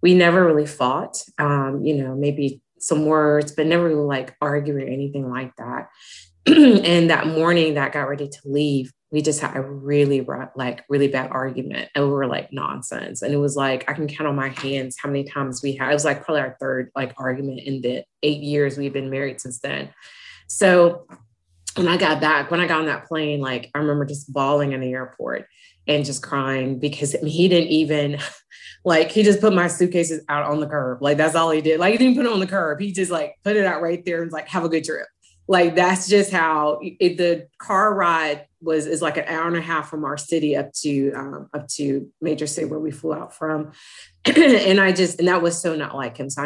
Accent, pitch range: American, 135-165 Hz